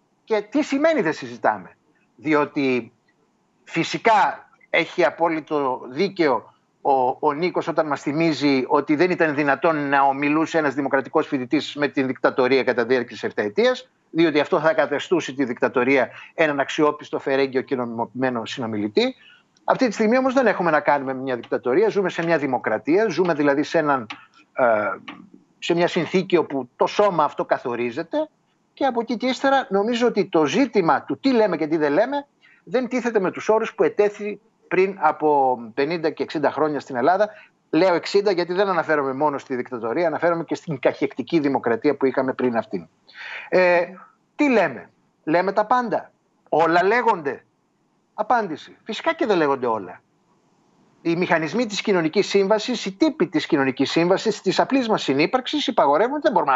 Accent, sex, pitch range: native, male, 140-215 Hz